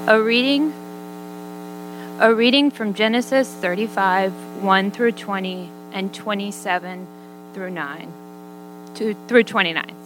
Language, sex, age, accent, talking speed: English, female, 20-39, American, 100 wpm